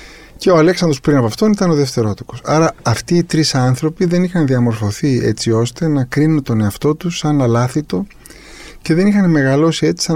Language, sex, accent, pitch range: Greek, male, native, 105-155 Hz